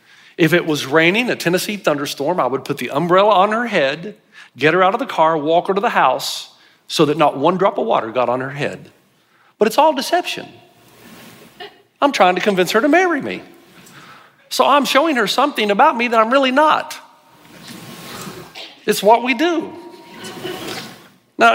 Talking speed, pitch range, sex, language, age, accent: 180 wpm, 195-290 Hz, male, English, 50-69, American